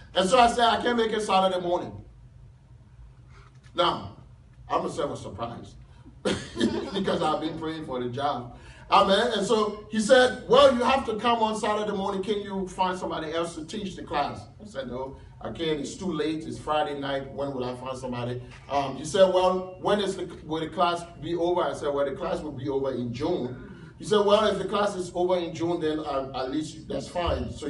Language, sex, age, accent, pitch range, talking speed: English, male, 40-59, American, 125-185 Hz, 215 wpm